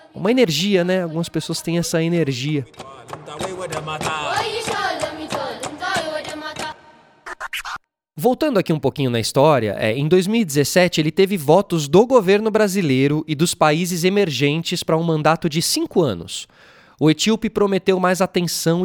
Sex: male